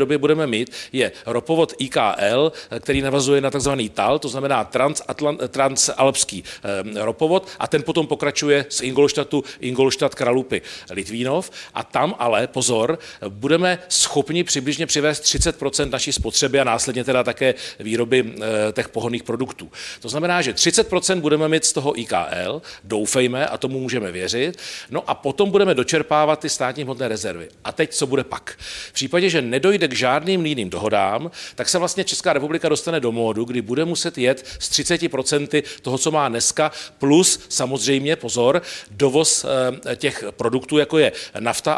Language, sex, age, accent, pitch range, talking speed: Czech, male, 40-59, native, 125-155 Hz, 150 wpm